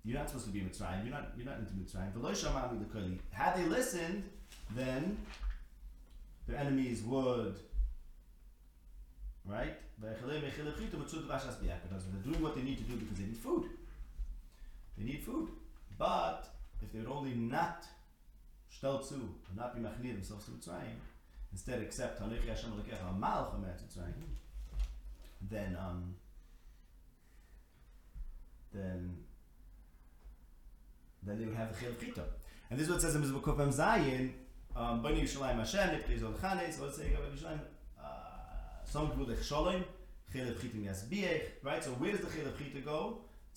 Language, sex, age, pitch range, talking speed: English, male, 30-49, 90-130 Hz, 145 wpm